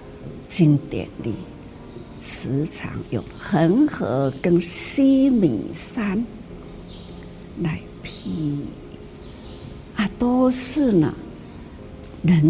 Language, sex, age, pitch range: Chinese, female, 60-79, 125-210 Hz